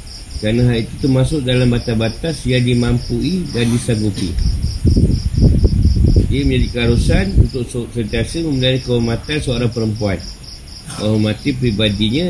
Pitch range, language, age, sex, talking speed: 95-125 Hz, Malay, 50-69, male, 100 wpm